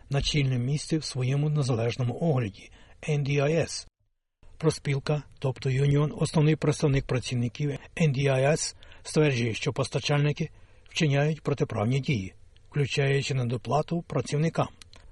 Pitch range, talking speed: 120-150 Hz, 100 wpm